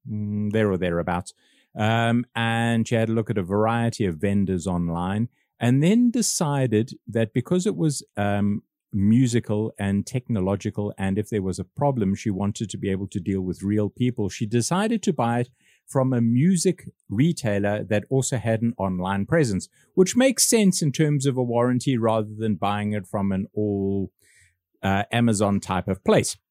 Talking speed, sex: 175 wpm, male